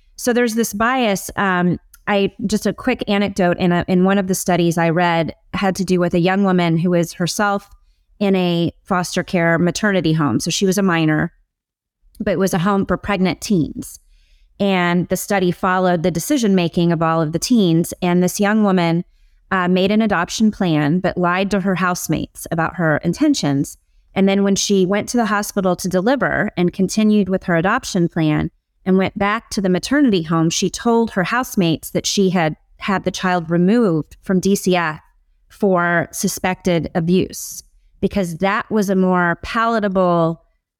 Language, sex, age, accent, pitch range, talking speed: English, female, 30-49, American, 170-200 Hz, 180 wpm